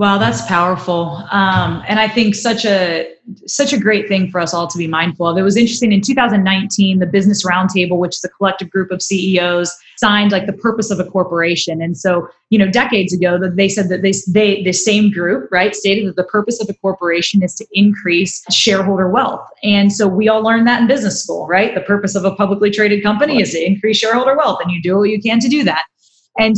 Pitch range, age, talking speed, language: 185-220 Hz, 20-39, 225 wpm, English